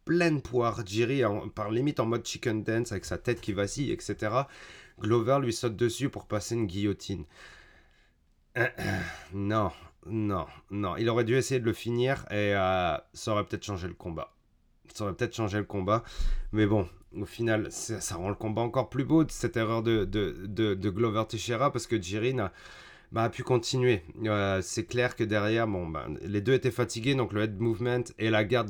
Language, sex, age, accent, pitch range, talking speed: French, male, 30-49, French, 105-125 Hz, 200 wpm